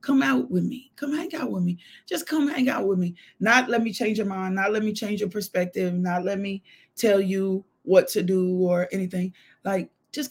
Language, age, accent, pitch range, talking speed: English, 30-49, American, 185-235 Hz, 225 wpm